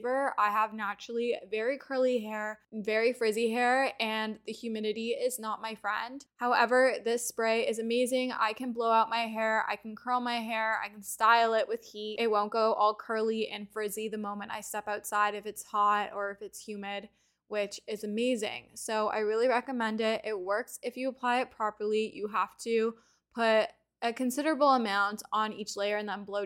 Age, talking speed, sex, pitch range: 10-29, 195 wpm, female, 210-235 Hz